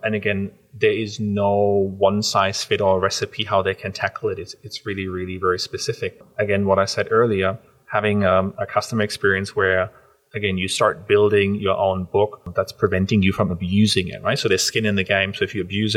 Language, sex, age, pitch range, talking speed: English, male, 30-49, 95-115 Hz, 210 wpm